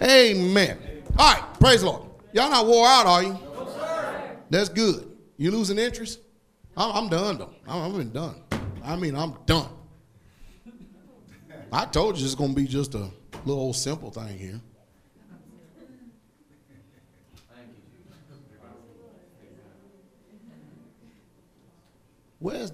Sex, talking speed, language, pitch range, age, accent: male, 115 wpm, English, 125-195 Hz, 40-59, American